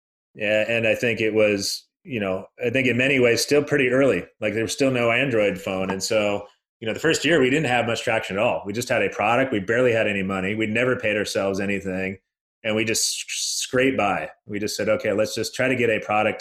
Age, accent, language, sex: 30-49, American, English, male